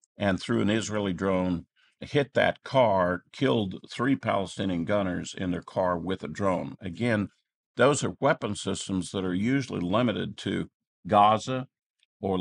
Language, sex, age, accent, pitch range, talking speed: English, male, 50-69, American, 90-105 Hz, 145 wpm